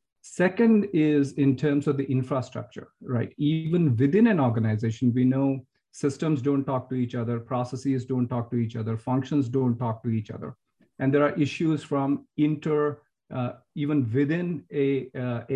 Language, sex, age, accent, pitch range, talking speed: English, male, 50-69, Indian, 125-145 Hz, 165 wpm